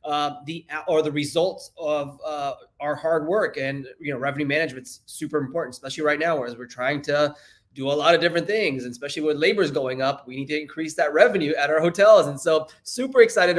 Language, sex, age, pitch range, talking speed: English, male, 20-39, 150-190 Hz, 220 wpm